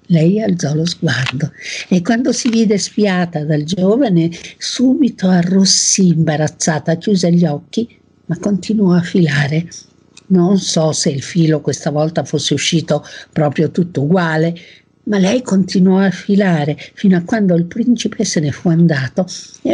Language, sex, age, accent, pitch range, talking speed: Italian, female, 50-69, native, 155-200 Hz, 145 wpm